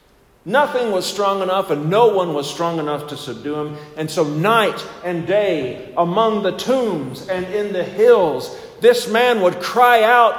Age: 50-69